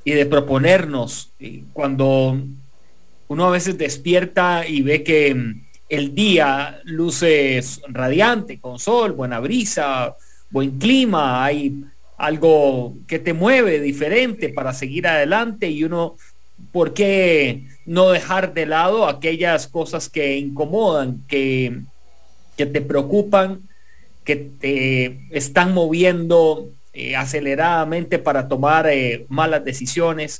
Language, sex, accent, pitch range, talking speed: English, male, Mexican, 135-170 Hz, 115 wpm